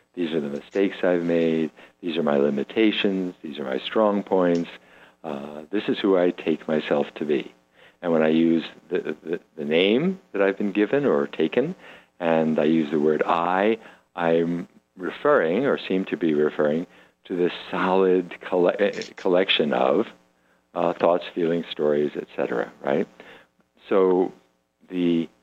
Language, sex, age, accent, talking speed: English, male, 60-79, American, 150 wpm